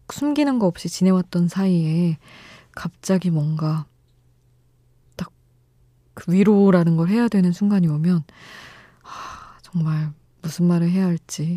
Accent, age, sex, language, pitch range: native, 20-39, female, Korean, 130-185 Hz